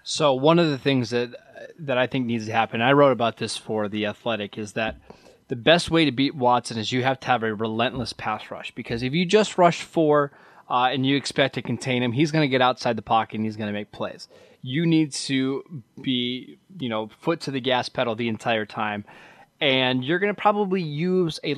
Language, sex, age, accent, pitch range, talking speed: English, male, 20-39, American, 120-150 Hz, 235 wpm